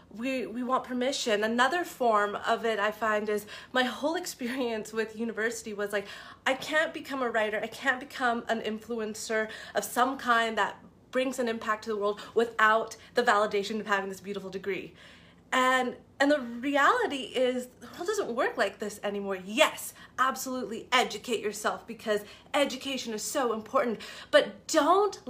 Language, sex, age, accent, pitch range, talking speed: English, female, 30-49, American, 210-255 Hz, 165 wpm